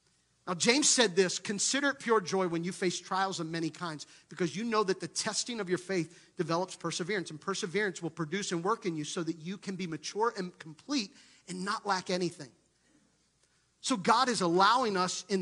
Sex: male